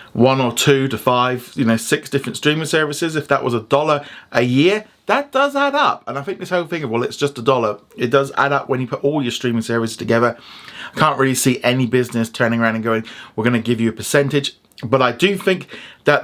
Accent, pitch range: British, 110-140 Hz